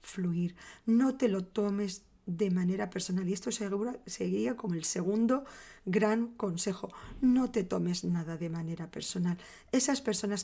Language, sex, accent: Spanish, female, Spanish